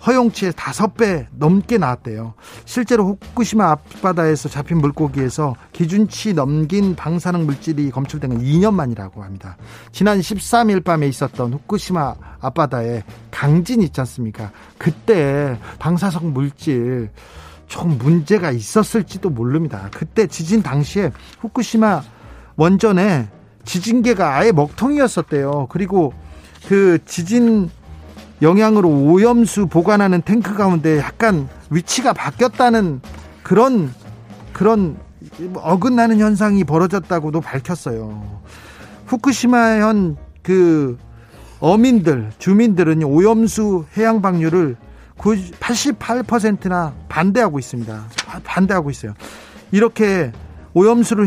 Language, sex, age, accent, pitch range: Korean, male, 40-59, native, 130-210 Hz